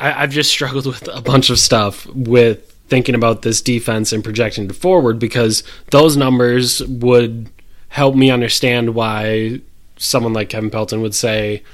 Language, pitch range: English, 110-135 Hz